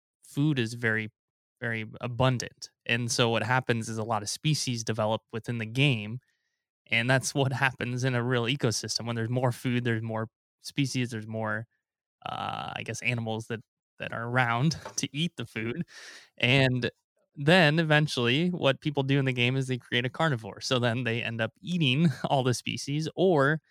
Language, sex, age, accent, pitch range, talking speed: English, male, 20-39, American, 115-135 Hz, 180 wpm